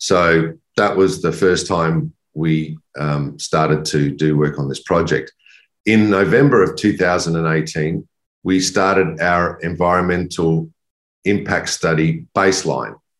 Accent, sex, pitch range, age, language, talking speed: Australian, male, 80-90 Hz, 50-69, English, 120 wpm